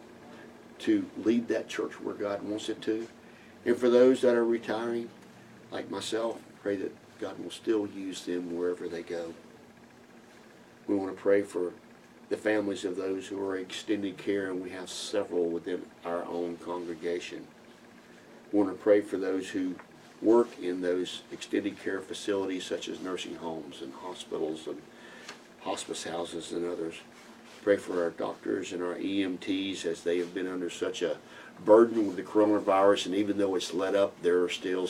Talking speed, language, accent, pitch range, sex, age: 170 wpm, English, American, 85-105 Hz, male, 50-69